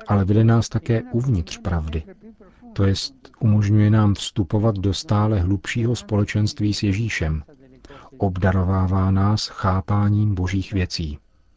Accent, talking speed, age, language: native, 115 wpm, 40-59, Czech